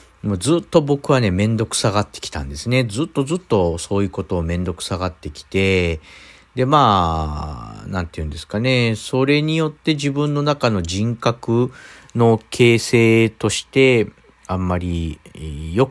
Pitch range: 90-130 Hz